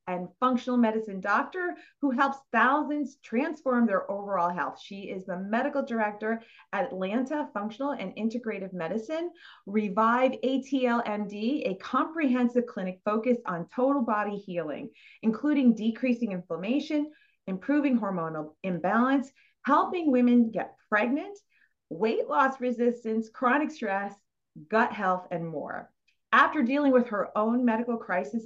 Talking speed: 120 wpm